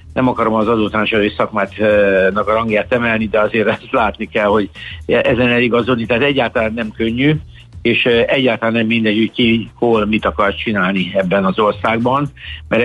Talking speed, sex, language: 160 wpm, male, Hungarian